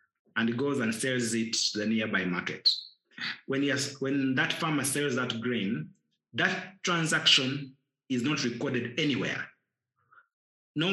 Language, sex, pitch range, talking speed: English, male, 120-150 Hz, 125 wpm